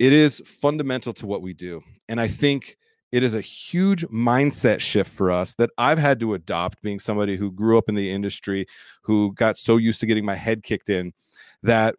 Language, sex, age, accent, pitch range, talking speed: English, male, 30-49, American, 105-130 Hz, 210 wpm